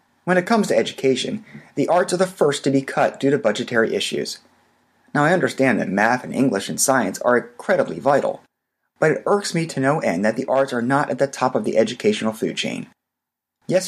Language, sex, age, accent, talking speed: English, male, 30-49, American, 215 wpm